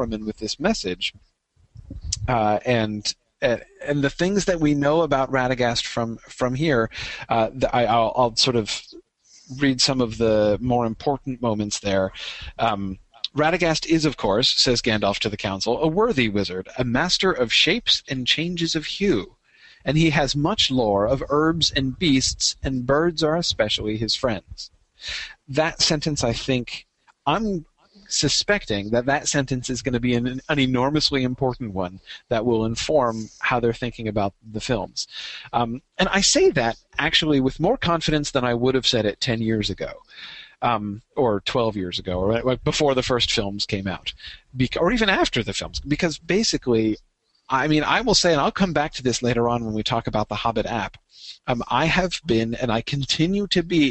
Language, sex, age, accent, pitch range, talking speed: English, male, 40-59, American, 110-150 Hz, 180 wpm